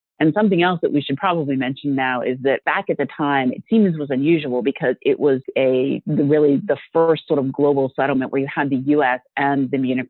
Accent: American